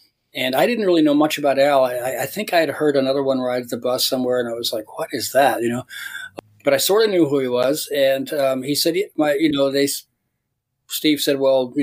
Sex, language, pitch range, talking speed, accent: male, English, 125-150 Hz, 255 wpm, American